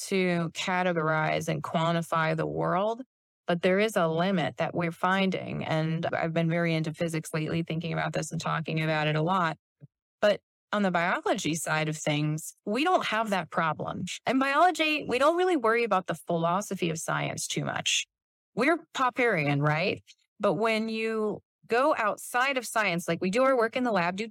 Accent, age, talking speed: American, 30-49, 185 wpm